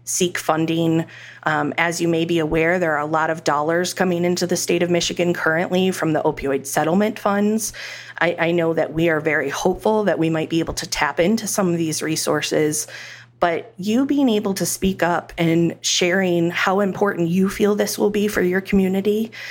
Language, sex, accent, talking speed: English, female, American, 200 wpm